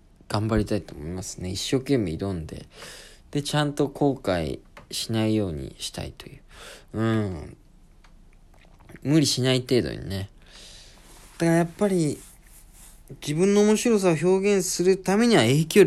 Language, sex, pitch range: Japanese, male, 95-150 Hz